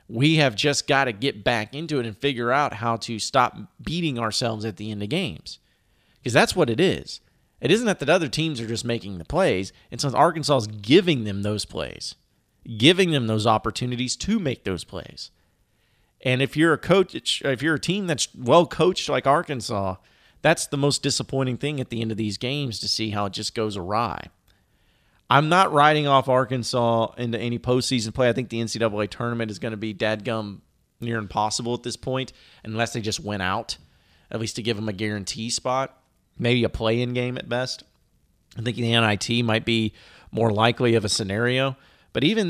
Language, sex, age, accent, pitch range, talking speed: English, male, 40-59, American, 110-140 Hz, 200 wpm